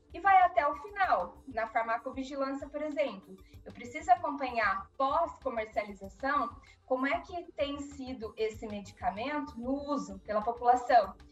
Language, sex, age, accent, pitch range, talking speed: Portuguese, female, 20-39, Brazilian, 225-290 Hz, 135 wpm